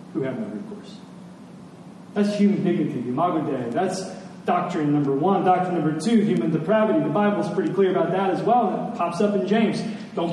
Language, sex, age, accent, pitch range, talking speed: English, male, 40-59, American, 185-225 Hz, 175 wpm